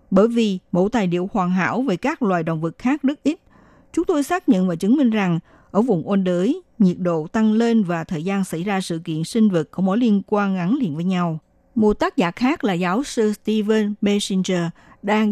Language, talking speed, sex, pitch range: Vietnamese, 225 wpm, female, 180-240 Hz